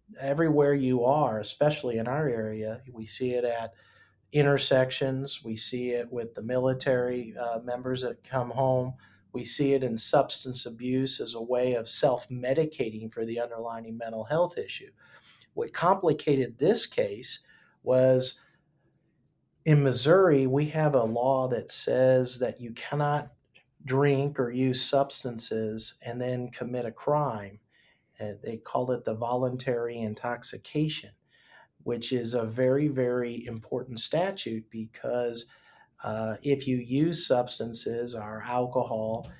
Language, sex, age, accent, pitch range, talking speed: English, male, 50-69, American, 115-135 Hz, 130 wpm